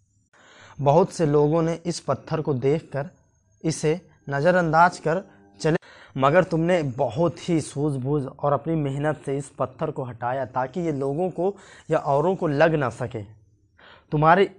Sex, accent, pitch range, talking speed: male, native, 125-165 Hz, 150 wpm